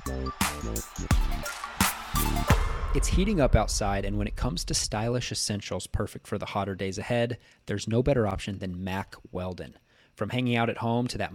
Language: English